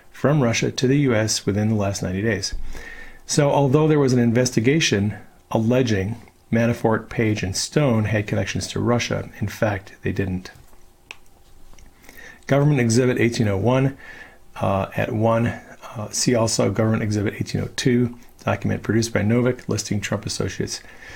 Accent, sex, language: American, male, English